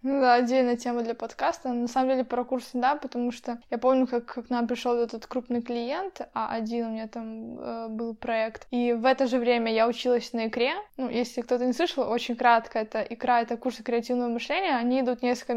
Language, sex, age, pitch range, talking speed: Russian, female, 10-29, 235-275 Hz, 215 wpm